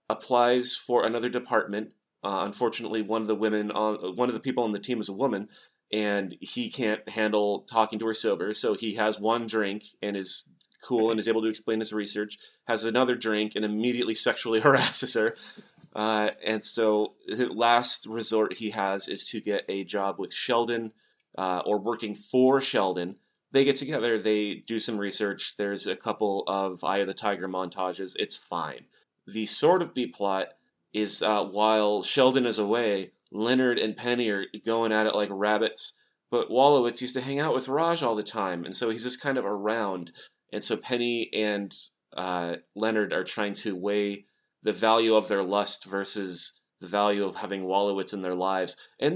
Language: English